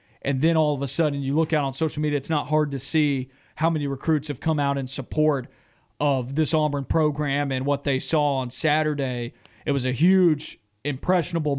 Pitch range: 140-165 Hz